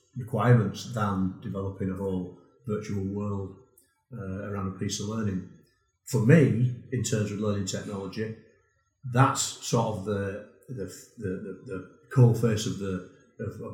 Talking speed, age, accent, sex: 135 wpm, 40-59, British, male